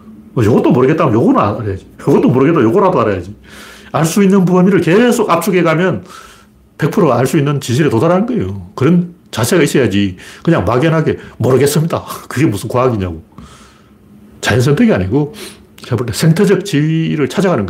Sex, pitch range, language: male, 105-165 Hz, Korean